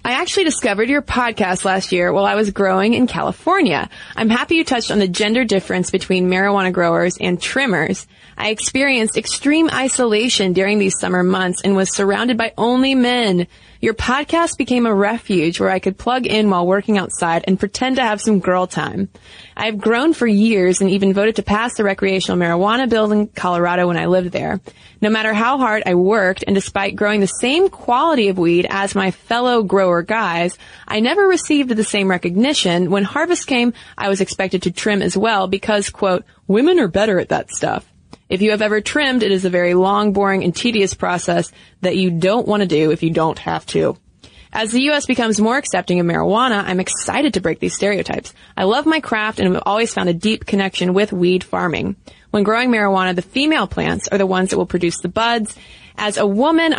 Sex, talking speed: female, 200 wpm